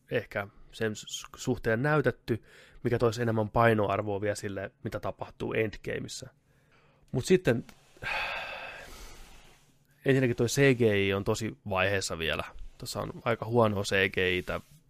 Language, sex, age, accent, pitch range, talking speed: Finnish, male, 20-39, native, 100-125 Hz, 115 wpm